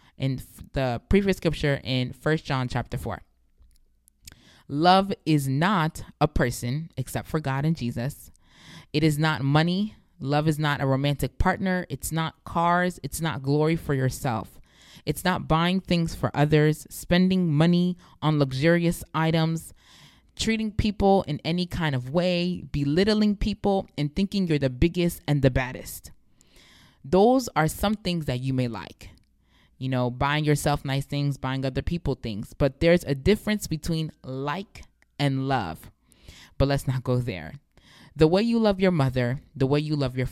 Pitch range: 130-175 Hz